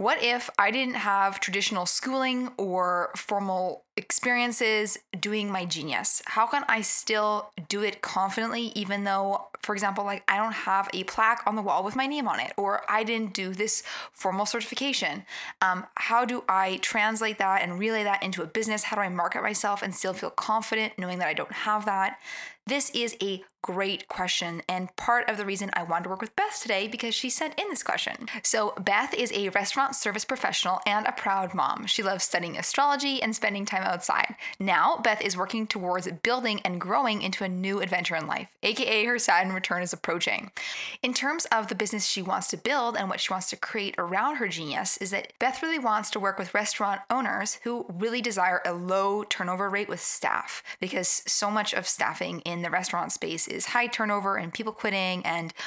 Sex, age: female, 20-39